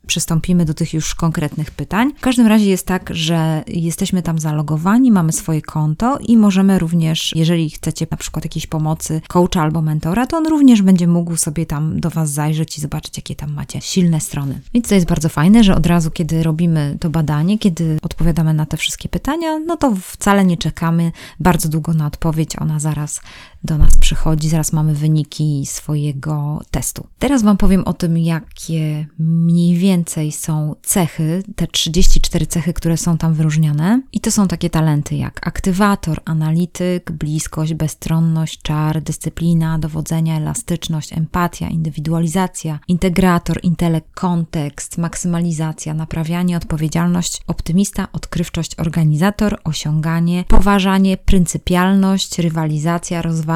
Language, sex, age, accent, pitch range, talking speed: Polish, female, 20-39, native, 155-180 Hz, 145 wpm